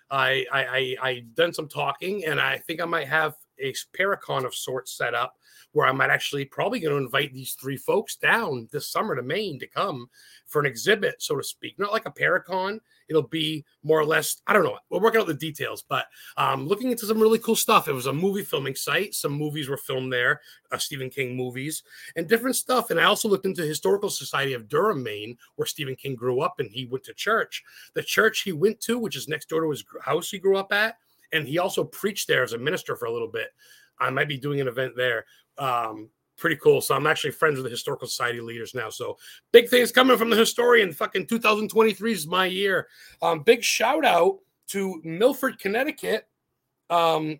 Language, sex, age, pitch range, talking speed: English, male, 30-49, 145-220 Hz, 220 wpm